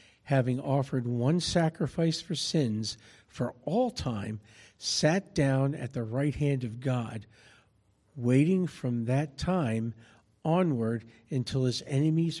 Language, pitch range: English, 115-150 Hz